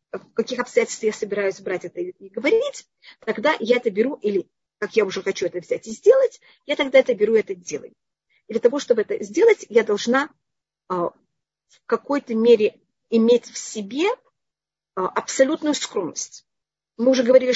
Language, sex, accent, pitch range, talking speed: Russian, female, native, 225-285 Hz, 170 wpm